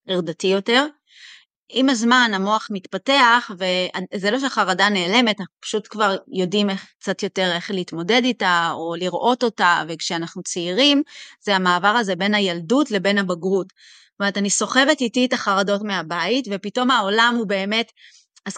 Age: 30-49